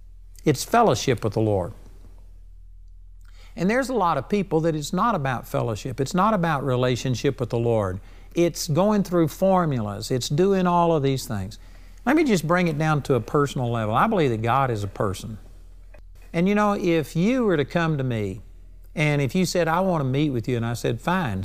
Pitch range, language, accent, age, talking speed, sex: 110-180 Hz, English, American, 60-79, 205 wpm, male